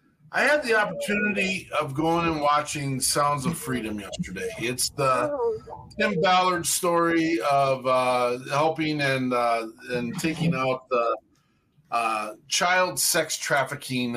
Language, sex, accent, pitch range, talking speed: English, male, American, 135-175 Hz, 125 wpm